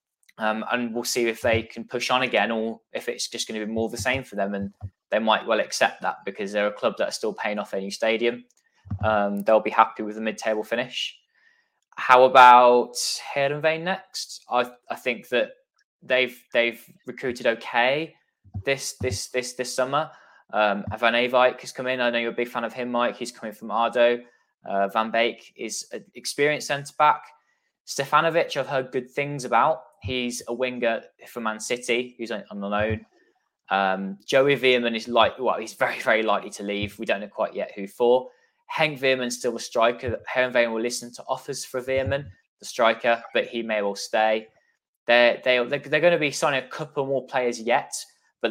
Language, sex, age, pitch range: English, male, 10-29, 110-130 Hz